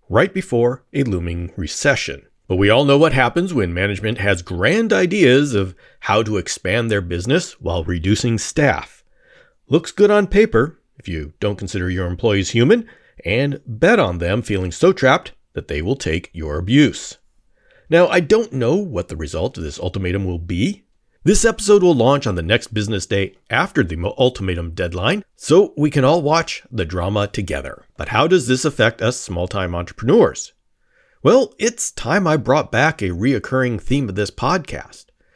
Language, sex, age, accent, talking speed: English, male, 40-59, American, 175 wpm